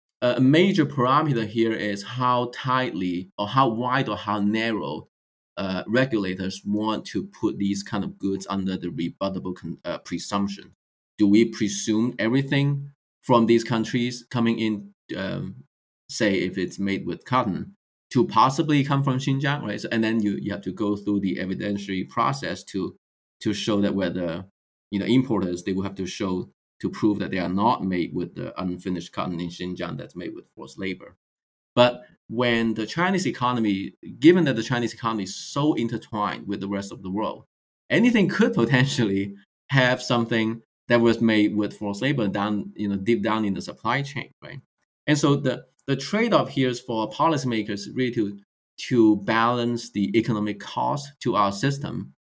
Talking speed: 175 wpm